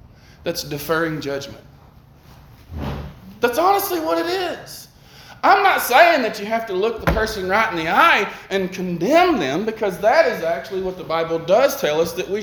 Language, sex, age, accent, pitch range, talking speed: English, male, 20-39, American, 145-210 Hz, 180 wpm